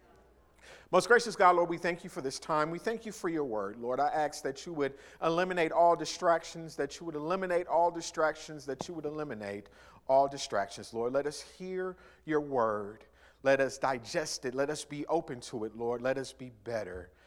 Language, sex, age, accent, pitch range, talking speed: English, male, 50-69, American, 150-205 Hz, 200 wpm